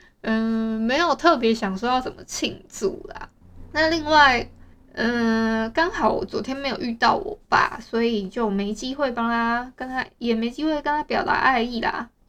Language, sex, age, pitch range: Chinese, female, 20-39, 225-310 Hz